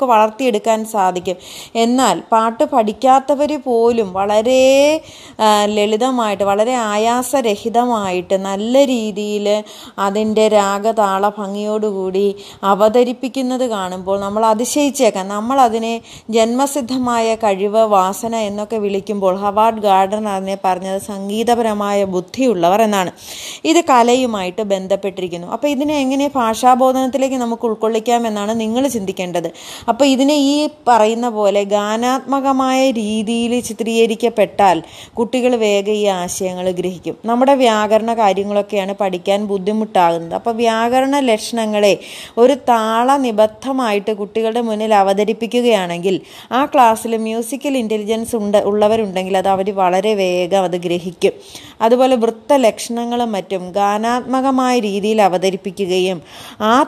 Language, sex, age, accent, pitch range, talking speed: Malayalam, female, 20-39, native, 200-245 Hz, 95 wpm